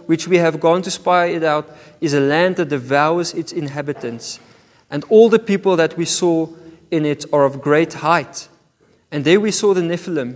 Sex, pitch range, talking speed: male, 160-210 Hz, 195 wpm